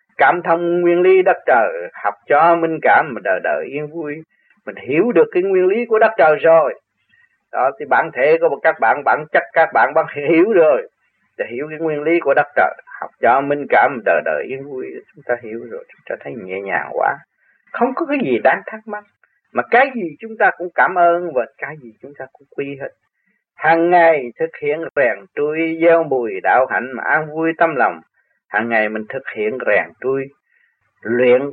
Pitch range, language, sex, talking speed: 145-225 Hz, Vietnamese, male, 205 wpm